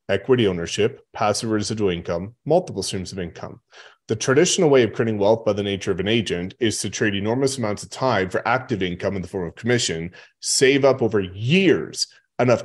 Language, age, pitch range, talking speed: English, 30-49, 95-115 Hz, 195 wpm